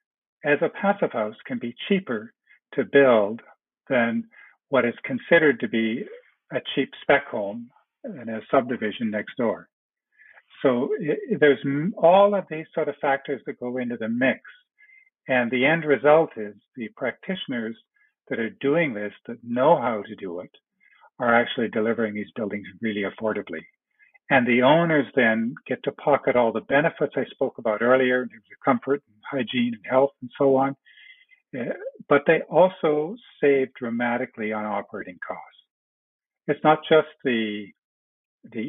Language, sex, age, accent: English, male, 50-69, American